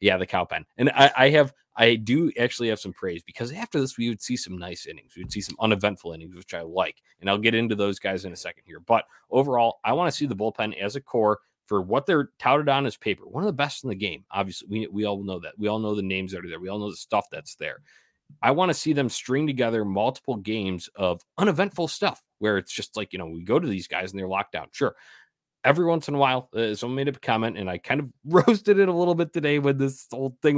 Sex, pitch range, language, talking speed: male, 100-140 Hz, English, 275 wpm